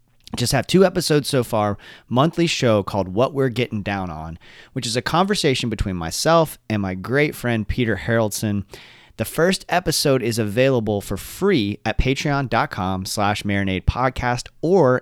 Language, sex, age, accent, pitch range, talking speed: English, male, 30-49, American, 100-135 Hz, 155 wpm